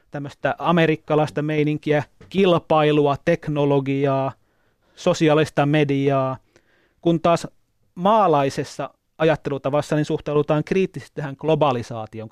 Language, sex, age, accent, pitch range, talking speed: Finnish, male, 30-49, native, 130-160 Hz, 80 wpm